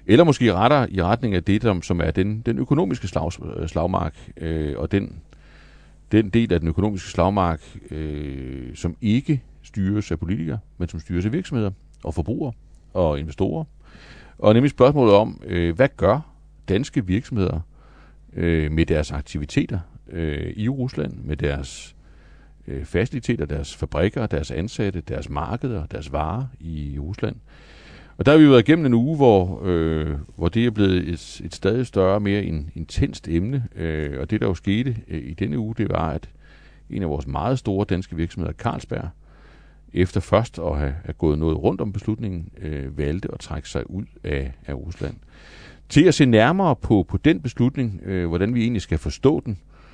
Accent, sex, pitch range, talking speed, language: native, male, 80-110 Hz, 170 wpm, Danish